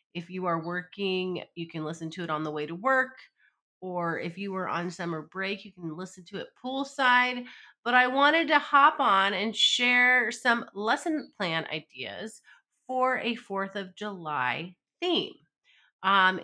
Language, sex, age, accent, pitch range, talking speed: English, female, 30-49, American, 190-245 Hz, 170 wpm